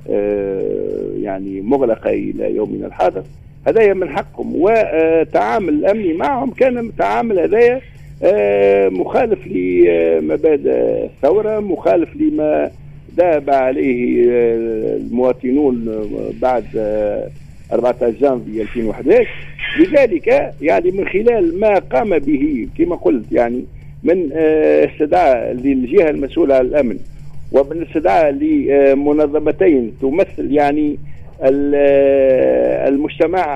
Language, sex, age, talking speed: Arabic, male, 50-69, 95 wpm